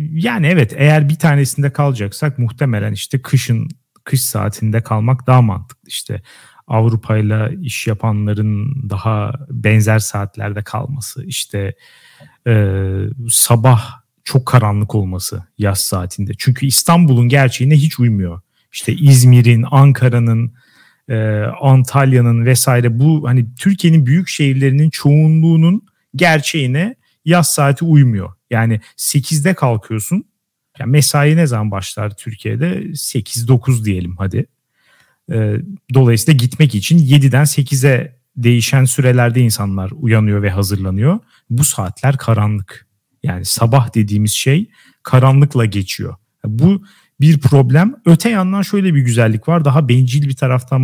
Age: 40-59